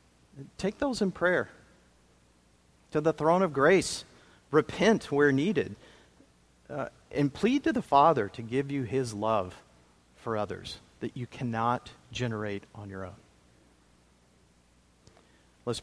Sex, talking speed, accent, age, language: male, 125 wpm, American, 50-69, English